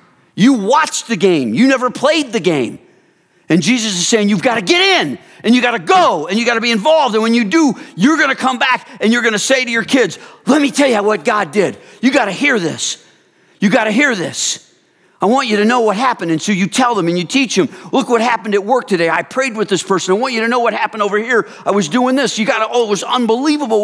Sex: male